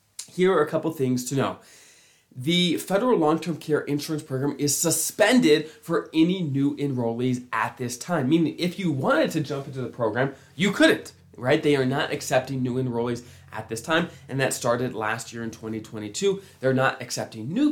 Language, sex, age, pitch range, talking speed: English, male, 20-39, 120-160 Hz, 185 wpm